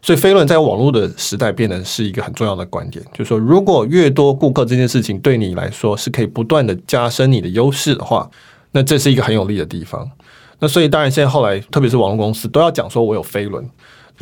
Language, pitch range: Chinese, 115-140 Hz